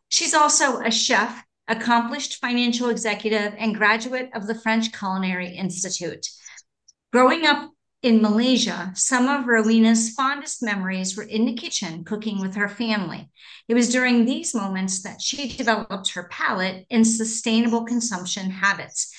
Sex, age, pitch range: female, 40-59, 200-250 Hz